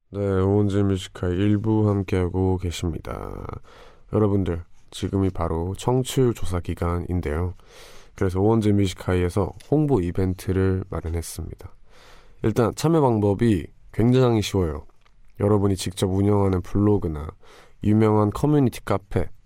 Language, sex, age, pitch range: Korean, male, 20-39, 90-110 Hz